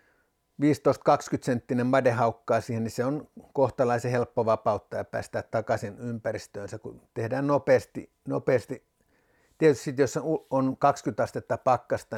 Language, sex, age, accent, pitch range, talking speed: Finnish, male, 60-79, native, 115-150 Hz, 120 wpm